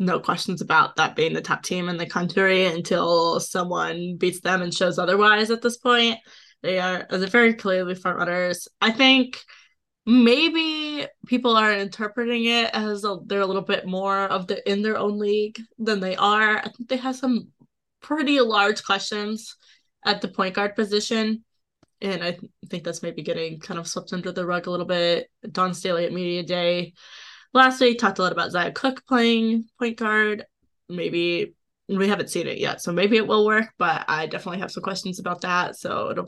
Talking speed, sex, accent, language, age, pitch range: 190 wpm, female, American, English, 20-39, 180-230 Hz